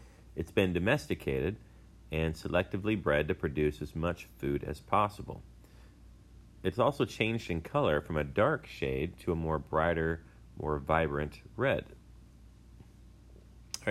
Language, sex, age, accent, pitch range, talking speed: English, male, 30-49, American, 75-95 Hz, 130 wpm